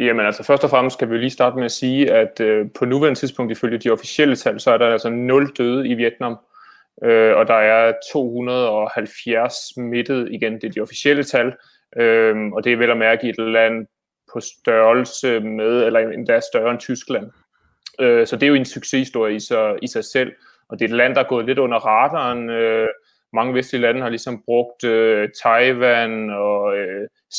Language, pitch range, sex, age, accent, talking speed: Danish, 115-130 Hz, male, 30-49, native, 200 wpm